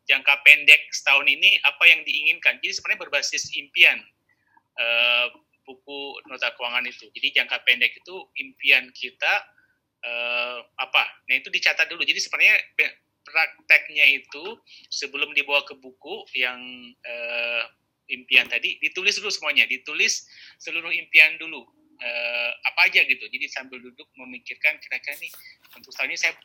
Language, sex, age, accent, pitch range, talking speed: Indonesian, male, 30-49, native, 120-145 Hz, 135 wpm